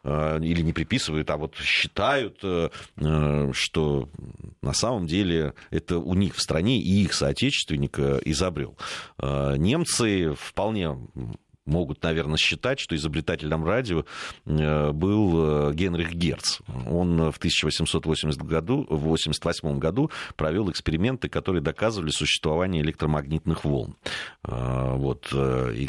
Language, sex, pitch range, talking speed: Russian, male, 75-90 Hz, 105 wpm